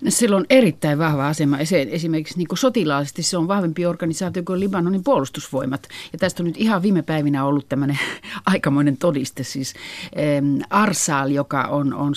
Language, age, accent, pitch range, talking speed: Finnish, 50-69, native, 135-175 Hz, 150 wpm